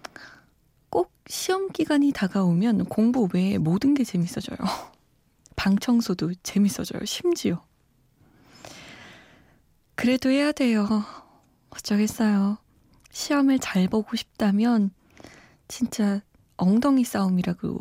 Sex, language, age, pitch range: female, Korean, 20-39, 185-255 Hz